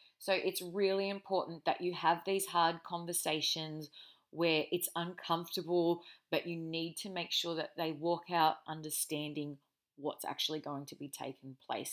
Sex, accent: female, Australian